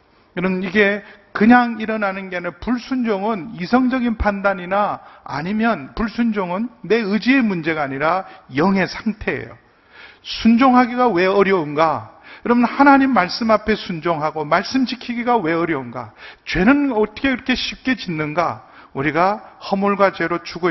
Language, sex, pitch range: Korean, male, 170-235 Hz